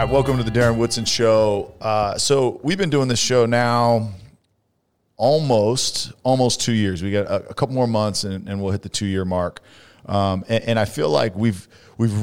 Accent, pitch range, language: American, 100-125 Hz, English